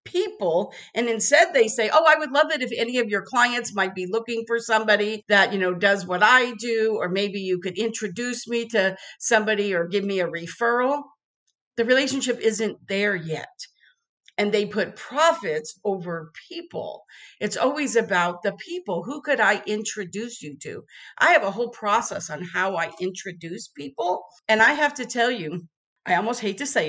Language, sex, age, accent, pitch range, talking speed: English, female, 50-69, American, 180-240 Hz, 185 wpm